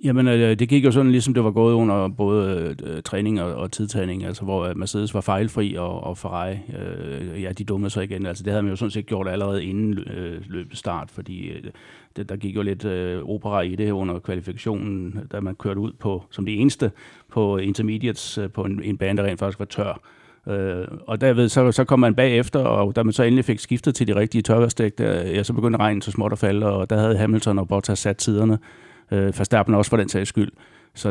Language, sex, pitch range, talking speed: Danish, male, 95-110 Hz, 230 wpm